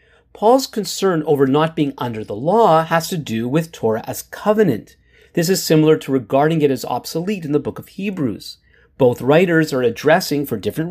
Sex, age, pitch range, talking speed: male, 40-59, 130-170 Hz, 185 wpm